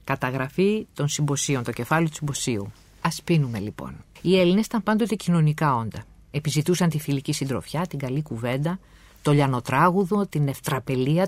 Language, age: Greek, 50-69